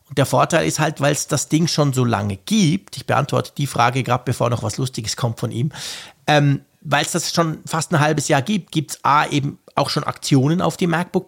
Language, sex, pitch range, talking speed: German, male, 125-160 Hz, 235 wpm